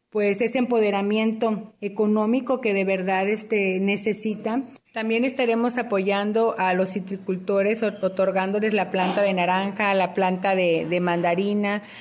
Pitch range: 195-220 Hz